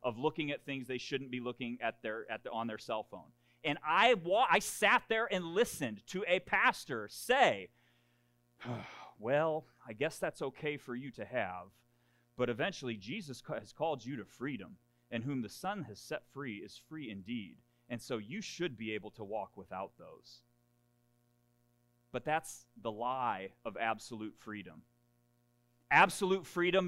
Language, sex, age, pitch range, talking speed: English, male, 30-49, 120-170 Hz, 160 wpm